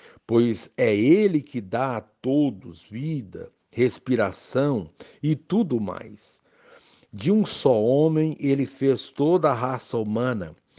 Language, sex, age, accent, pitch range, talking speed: Portuguese, male, 60-79, Brazilian, 110-145 Hz, 120 wpm